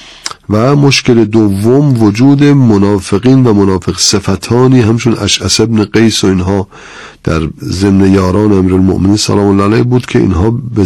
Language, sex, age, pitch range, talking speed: Persian, male, 50-69, 95-110 Hz, 140 wpm